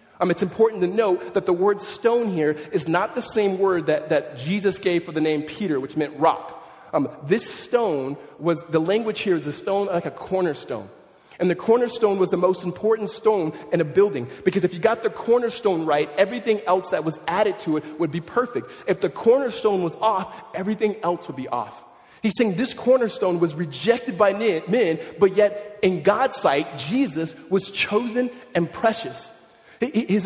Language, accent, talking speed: English, American, 190 wpm